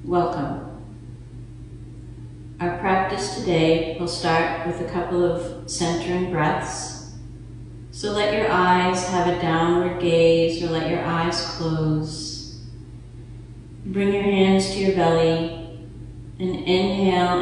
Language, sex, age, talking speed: English, female, 40-59, 115 wpm